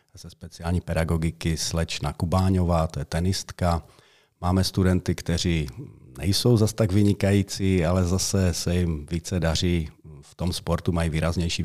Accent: native